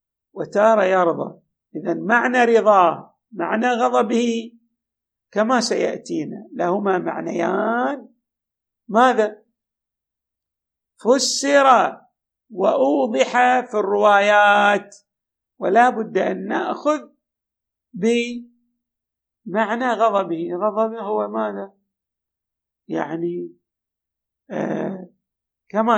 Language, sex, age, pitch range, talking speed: Arabic, male, 50-69, 170-240 Hz, 60 wpm